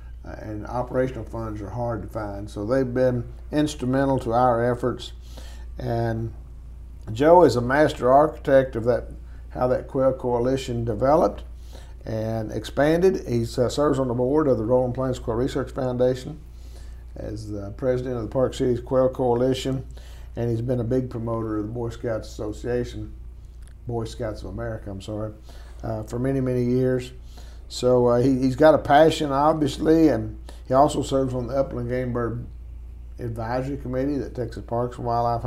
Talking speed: 160 wpm